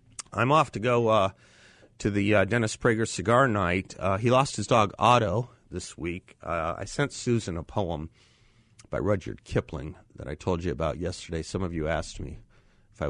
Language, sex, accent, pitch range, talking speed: English, male, American, 90-115 Hz, 190 wpm